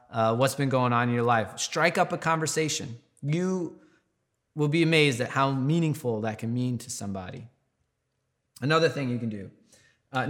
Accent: American